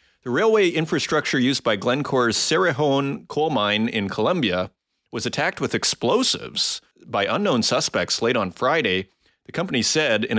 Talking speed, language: 145 wpm, English